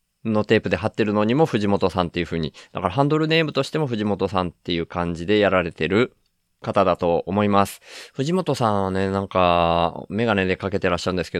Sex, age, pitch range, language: male, 20-39, 90-115 Hz, Japanese